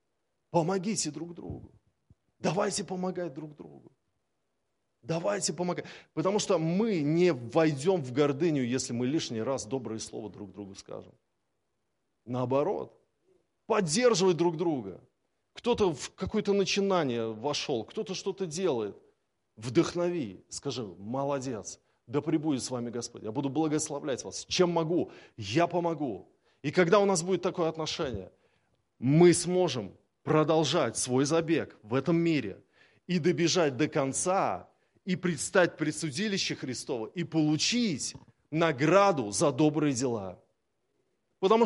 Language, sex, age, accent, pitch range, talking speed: Russian, male, 30-49, native, 135-185 Hz, 120 wpm